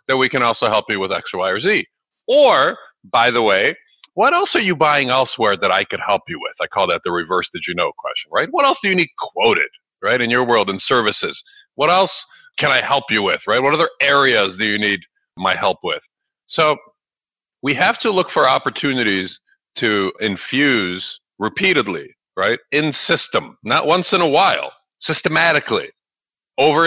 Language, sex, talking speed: English, male, 190 wpm